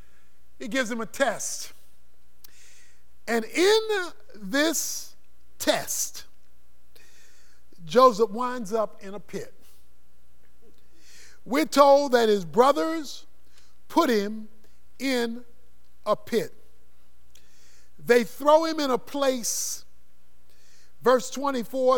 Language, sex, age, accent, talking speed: English, male, 50-69, American, 90 wpm